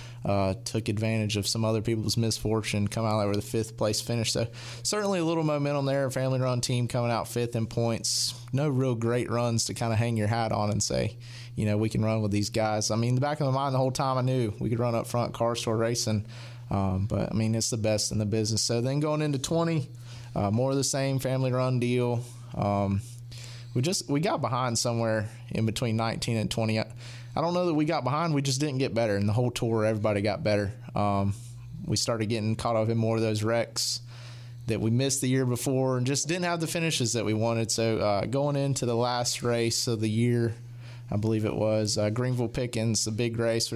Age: 30-49